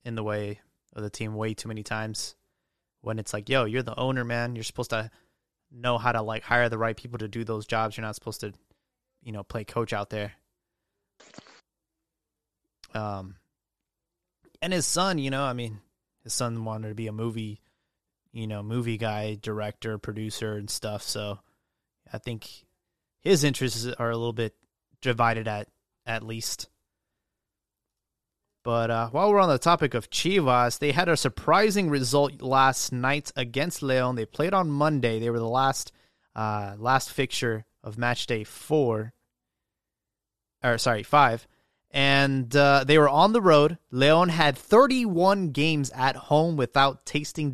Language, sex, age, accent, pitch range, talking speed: English, male, 20-39, American, 110-150 Hz, 165 wpm